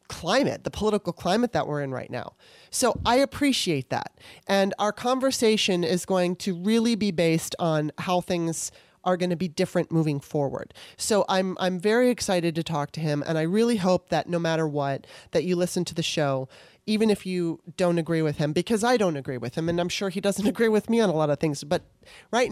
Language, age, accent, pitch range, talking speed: English, 30-49, American, 165-210 Hz, 220 wpm